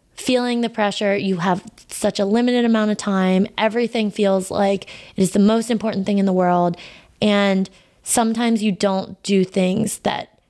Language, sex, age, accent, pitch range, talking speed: English, female, 20-39, American, 190-225 Hz, 170 wpm